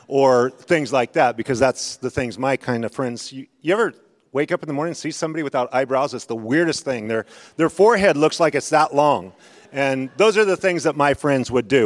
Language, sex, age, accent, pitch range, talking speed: English, male, 40-59, American, 135-170 Hz, 240 wpm